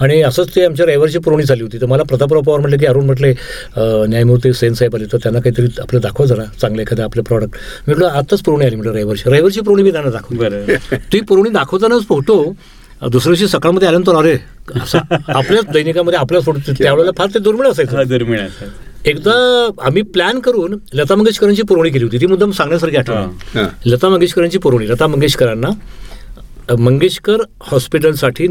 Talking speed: 175 wpm